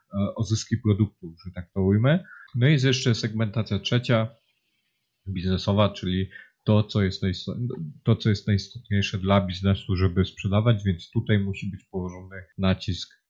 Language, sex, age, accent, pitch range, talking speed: Polish, male, 40-59, native, 100-115 Hz, 135 wpm